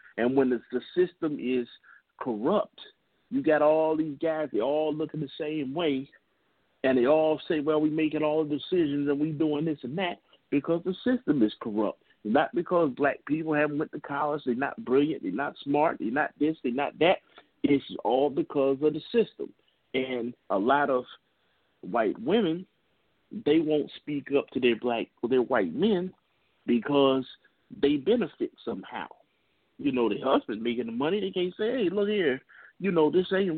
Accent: American